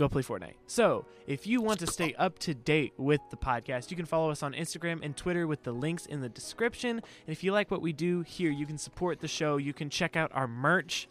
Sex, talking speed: male, 260 wpm